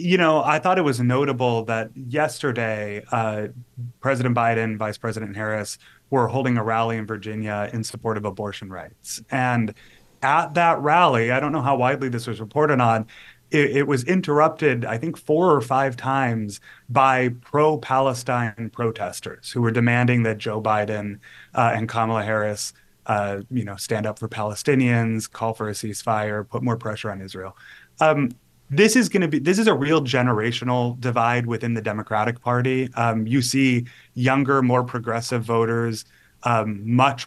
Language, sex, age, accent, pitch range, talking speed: English, male, 30-49, American, 110-135 Hz, 165 wpm